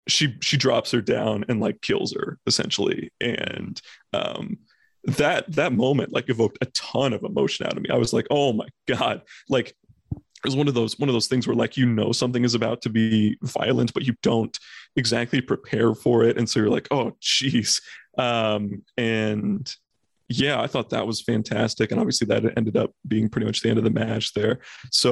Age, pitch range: 30-49, 110-130 Hz